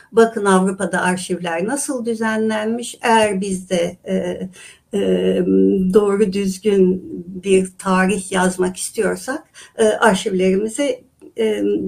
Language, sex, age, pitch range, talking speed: Turkish, female, 60-79, 185-245 Hz, 95 wpm